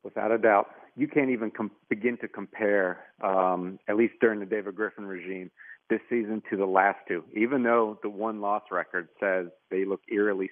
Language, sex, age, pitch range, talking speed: English, male, 40-59, 100-115 Hz, 190 wpm